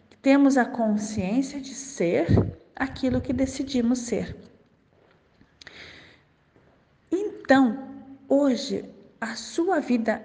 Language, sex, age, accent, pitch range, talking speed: Portuguese, female, 40-59, Brazilian, 215-275 Hz, 80 wpm